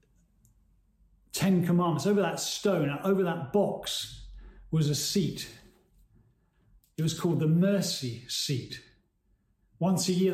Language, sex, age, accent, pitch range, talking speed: English, male, 40-59, British, 145-185 Hz, 115 wpm